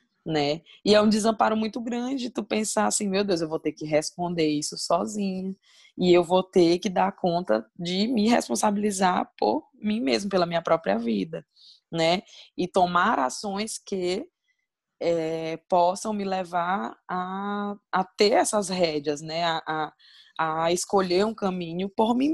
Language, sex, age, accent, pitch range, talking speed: Portuguese, female, 20-39, Brazilian, 165-210 Hz, 160 wpm